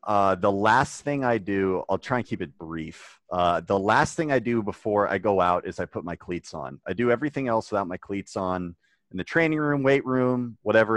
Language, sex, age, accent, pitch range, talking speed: English, male, 30-49, American, 95-125 Hz, 235 wpm